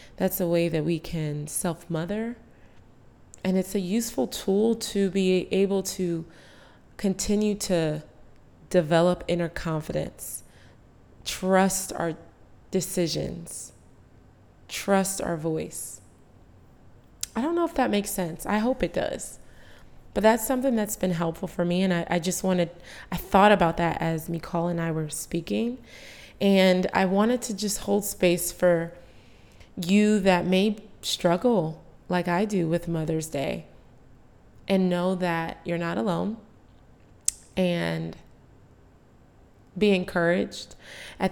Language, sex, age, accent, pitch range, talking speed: English, female, 20-39, American, 160-195 Hz, 130 wpm